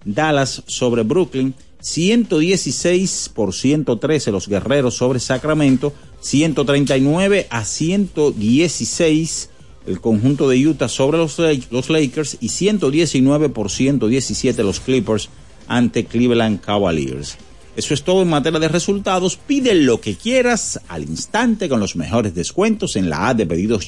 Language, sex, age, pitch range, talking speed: Spanish, male, 50-69, 115-170 Hz, 130 wpm